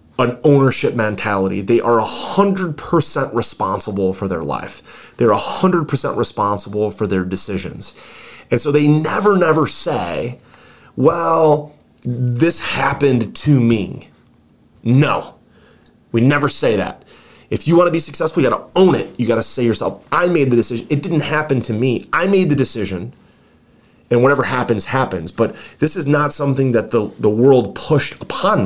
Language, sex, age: English, male, 30-49